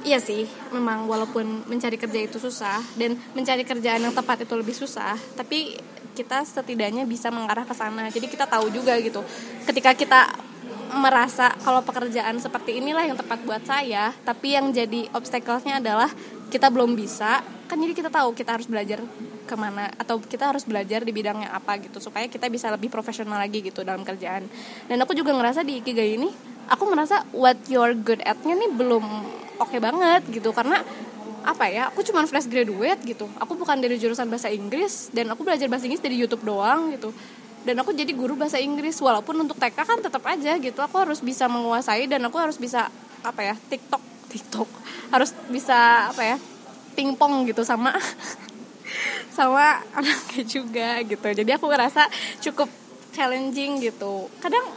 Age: 20-39